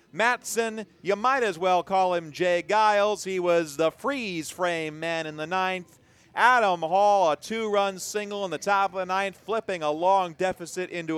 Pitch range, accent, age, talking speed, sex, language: 115-175 Hz, American, 40-59, 185 wpm, male, English